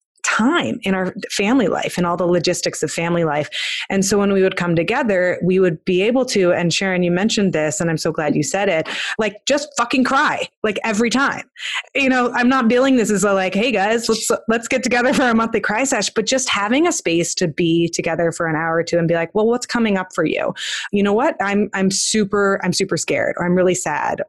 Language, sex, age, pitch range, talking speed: English, female, 20-39, 170-225 Hz, 240 wpm